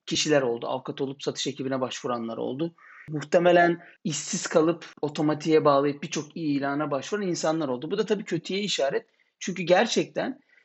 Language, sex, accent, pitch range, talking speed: Turkish, male, native, 135-185 Hz, 140 wpm